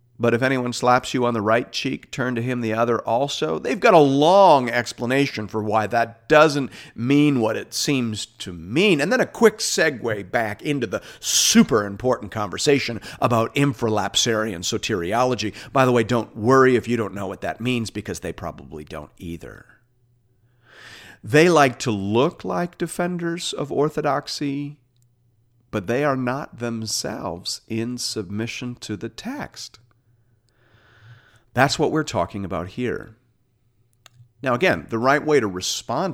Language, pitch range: English, 110-140 Hz